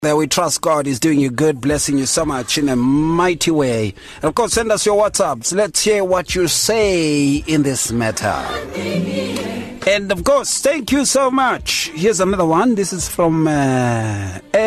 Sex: male